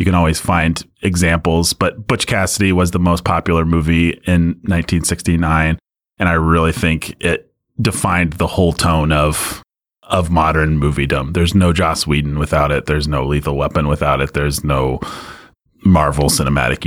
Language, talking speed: English, 155 wpm